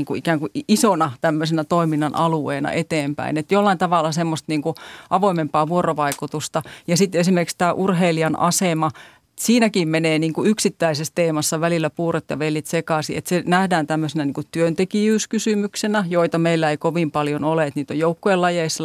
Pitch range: 150-175 Hz